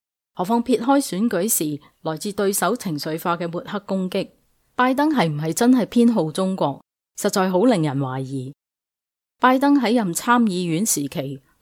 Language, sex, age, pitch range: Chinese, female, 30-49, 155-215 Hz